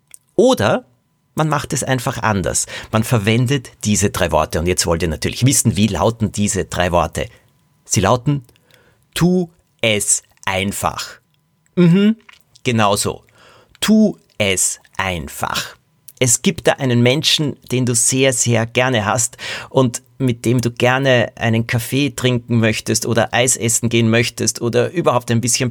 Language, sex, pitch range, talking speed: German, male, 105-130 Hz, 140 wpm